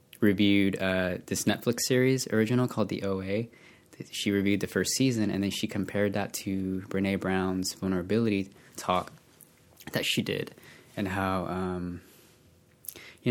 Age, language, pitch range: 20-39, English, 95-110 Hz